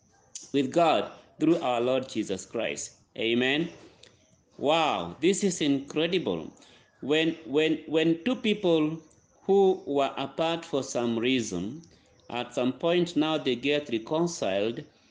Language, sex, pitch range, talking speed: English, male, 125-175 Hz, 120 wpm